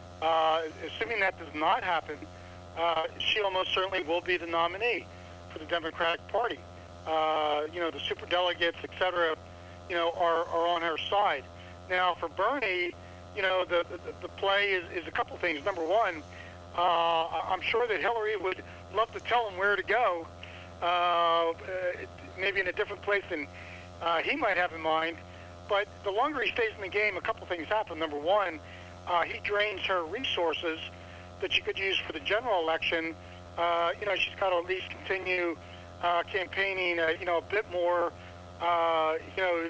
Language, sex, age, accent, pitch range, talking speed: English, male, 60-79, American, 155-190 Hz, 185 wpm